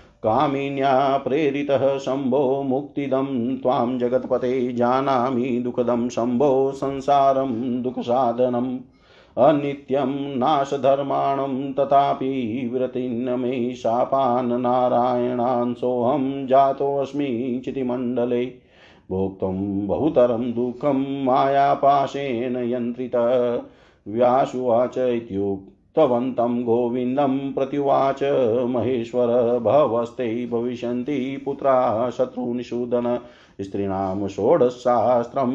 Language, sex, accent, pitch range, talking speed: Hindi, male, native, 120-135 Hz, 60 wpm